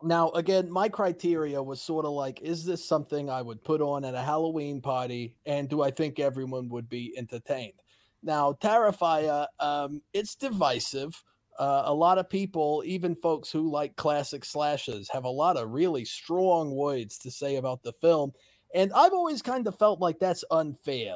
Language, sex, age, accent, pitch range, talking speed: English, male, 30-49, American, 135-170 Hz, 180 wpm